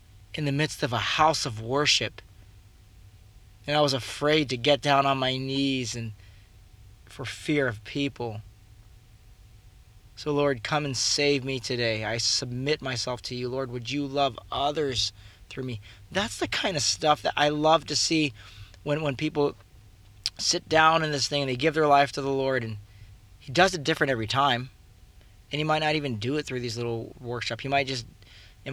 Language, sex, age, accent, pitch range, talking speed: English, male, 20-39, American, 105-140 Hz, 190 wpm